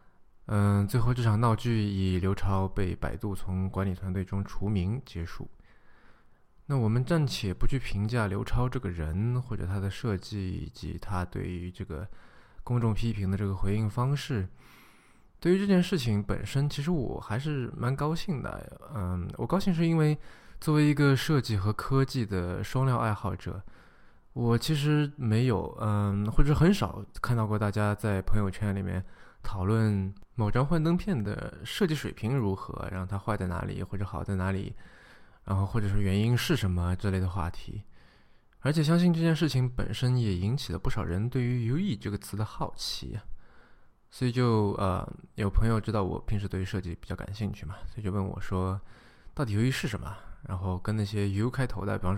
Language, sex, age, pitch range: Chinese, male, 20-39, 95-125 Hz